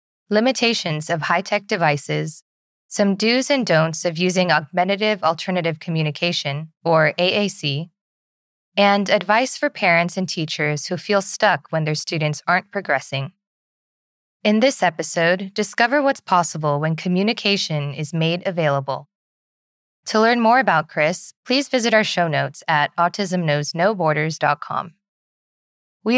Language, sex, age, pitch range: English, female, 20-39, 150-205 Hz